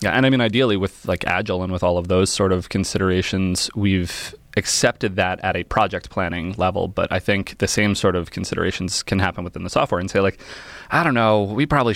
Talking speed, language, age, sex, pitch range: 225 wpm, English, 20-39, male, 90-110 Hz